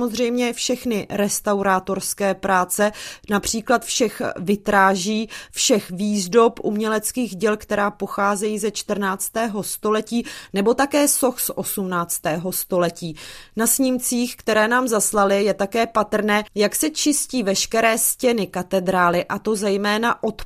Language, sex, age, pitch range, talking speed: Czech, female, 20-39, 200-235 Hz, 115 wpm